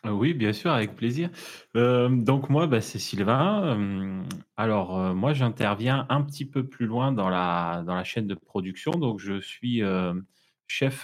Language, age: French, 30-49